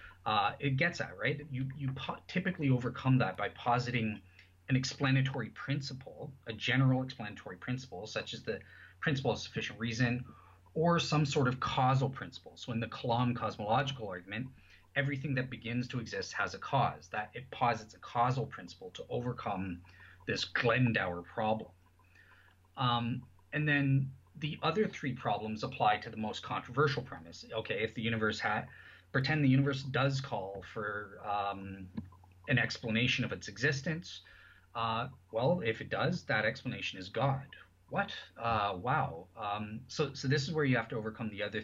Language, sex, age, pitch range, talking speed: English, male, 30-49, 105-135 Hz, 160 wpm